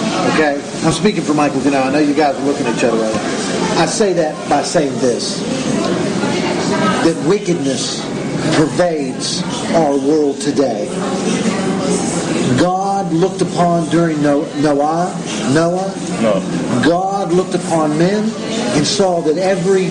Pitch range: 160-195 Hz